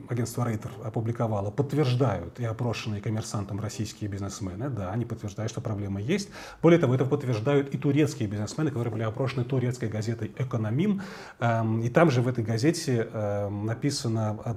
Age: 30-49